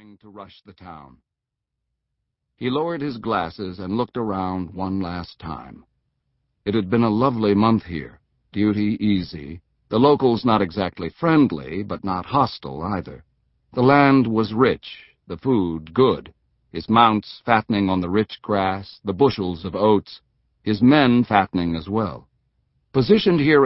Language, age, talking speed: English, 60-79, 145 wpm